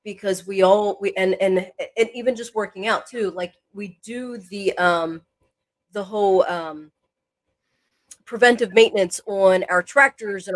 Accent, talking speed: American, 150 wpm